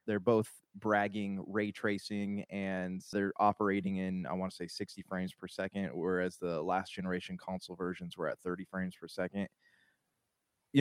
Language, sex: English, male